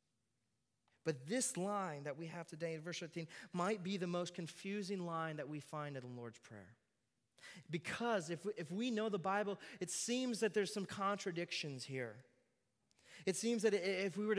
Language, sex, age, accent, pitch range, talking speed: English, male, 30-49, American, 125-190 Hz, 185 wpm